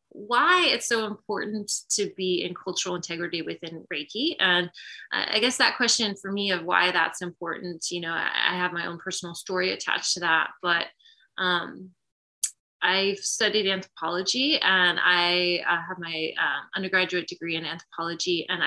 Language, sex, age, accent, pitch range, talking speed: English, female, 20-39, American, 175-200 Hz, 160 wpm